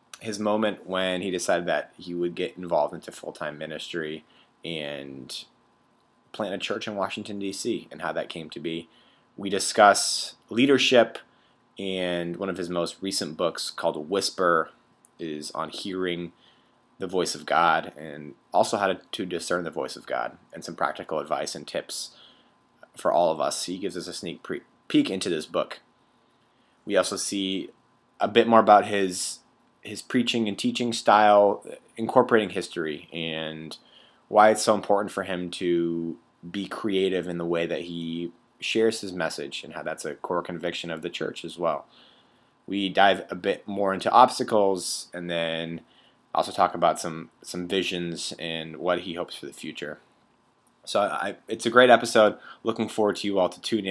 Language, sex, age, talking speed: English, male, 30-49, 170 wpm